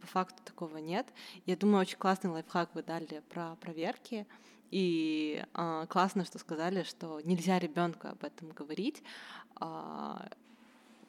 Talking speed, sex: 130 wpm, female